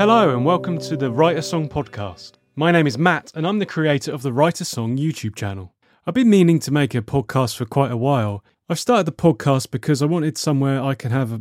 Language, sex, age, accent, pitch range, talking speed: English, male, 30-49, British, 120-150 Hz, 230 wpm